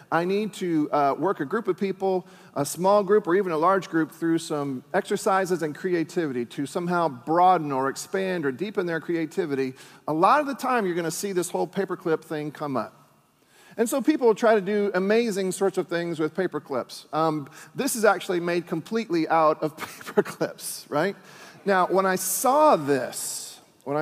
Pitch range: 150-190 Hz